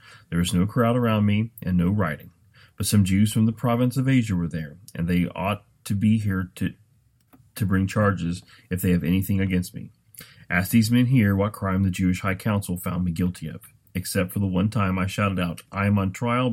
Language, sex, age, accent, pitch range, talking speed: English, male, 30-49, American, 90-115 Hz, 220 wpm